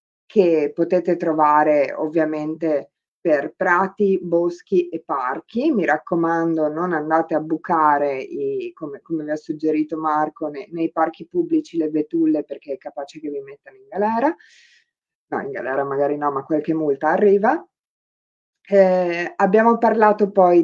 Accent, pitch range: native, 160-210 Hz